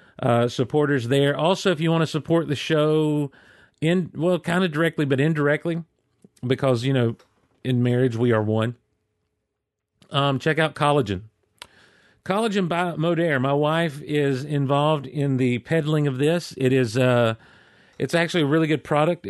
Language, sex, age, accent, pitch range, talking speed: English, male, 40-59, American, 125-150 Hz, 160 wpm